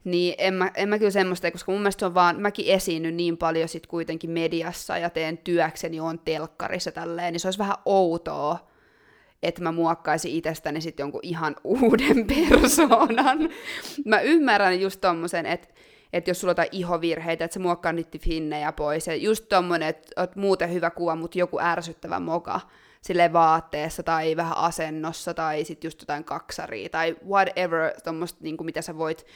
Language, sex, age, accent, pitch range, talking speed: Finnish, female, 20-39, native, 165-200 Hz, 175 wpm